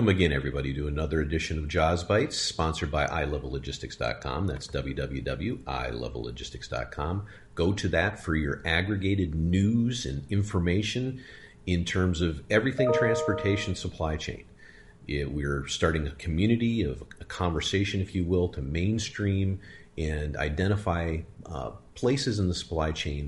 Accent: American